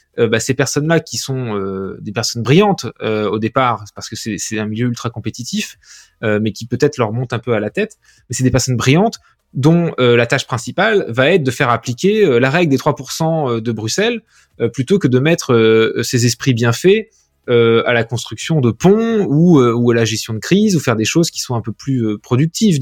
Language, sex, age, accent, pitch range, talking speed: French, male, 20-39, French, 115-160 Hz, 230 wpm